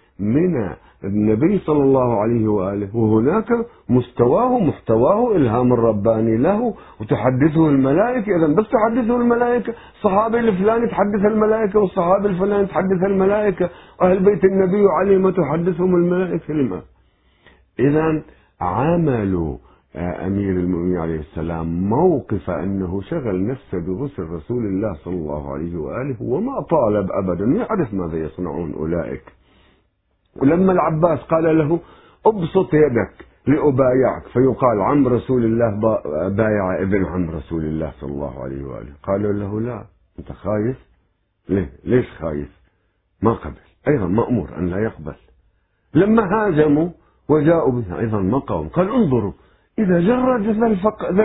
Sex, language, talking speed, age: male, Arabic, 120 wpm, 50-69